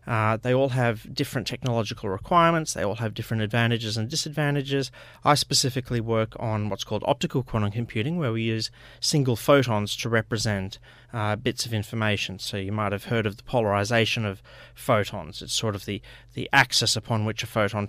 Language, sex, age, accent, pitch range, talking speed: English, male, 30-49, Australian, 105-125 Hz, 180 wpm